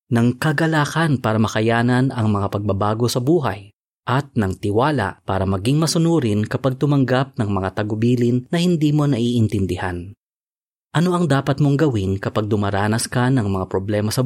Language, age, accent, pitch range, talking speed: Filipino, 30-49, native, 105-145 Hz, 150 wpm